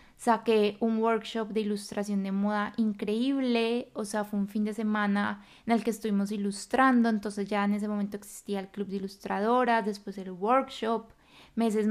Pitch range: 205-230 Hz